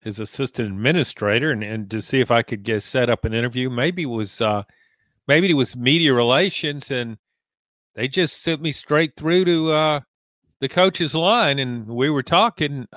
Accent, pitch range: American, 115-155 Hz